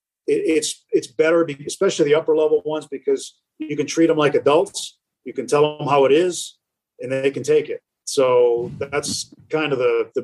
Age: 40-59